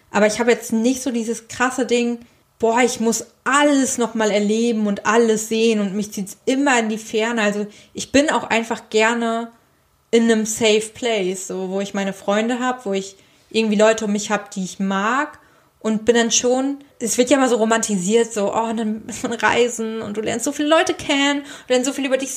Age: 20-39